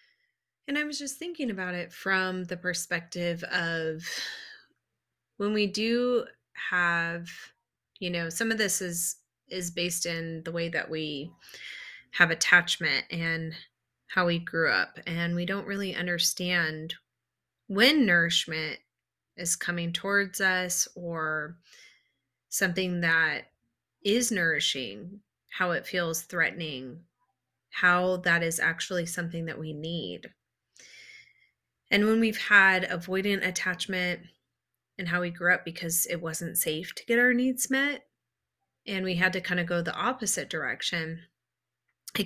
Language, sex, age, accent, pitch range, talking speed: English, female, 30-49, American, 170-195 Hz, 135 wpm